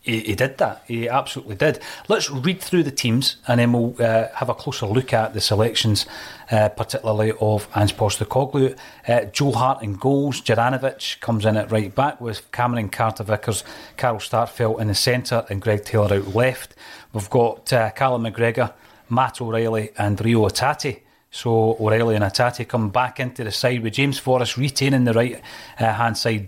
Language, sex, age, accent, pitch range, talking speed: English, male, 40-59, British, 110-130 Hz, 180 wpm